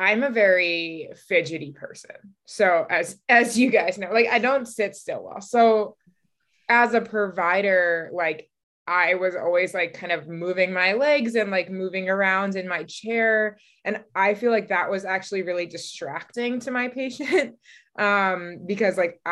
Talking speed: 165 wpm